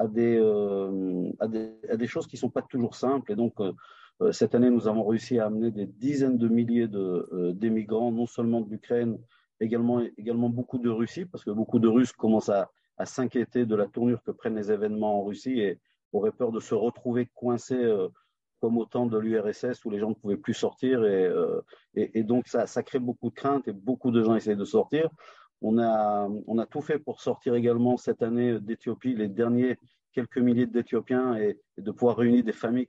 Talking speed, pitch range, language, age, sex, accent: 220 wpm, 110-130 Hz, French, 50-69, male, French